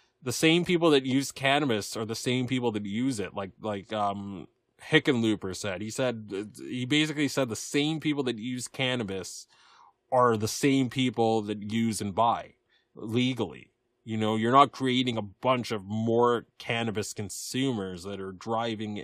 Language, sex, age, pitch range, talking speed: English, male, 20-39, 110-130 Hz, 165 wpm